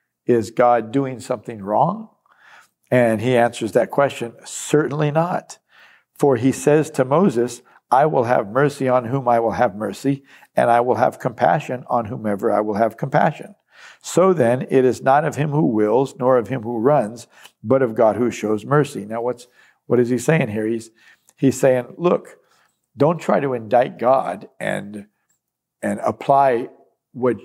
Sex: male